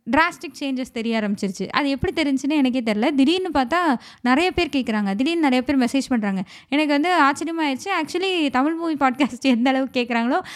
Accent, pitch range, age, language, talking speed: native, 230-295 Hz, 20-39, Tamil, 165 wpm